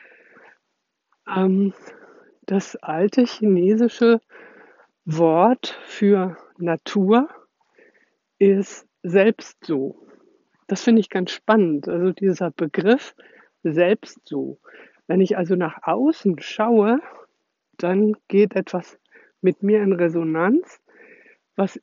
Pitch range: 180-235 Hz